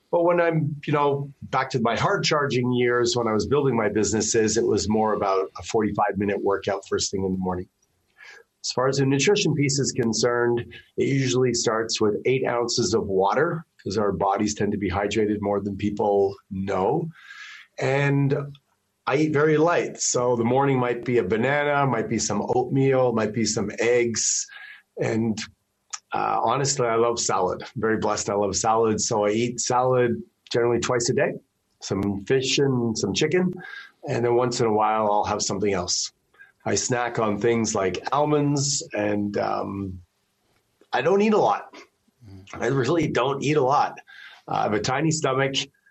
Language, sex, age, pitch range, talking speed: English, male, 40-59, 105-135 Hz, 175 wpm